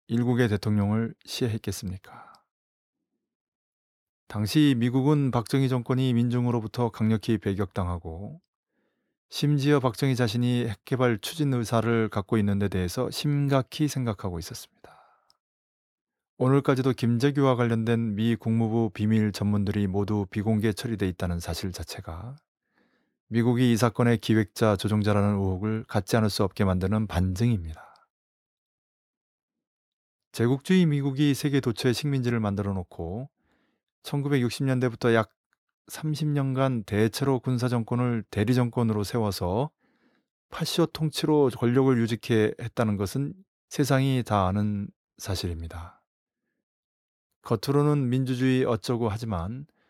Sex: male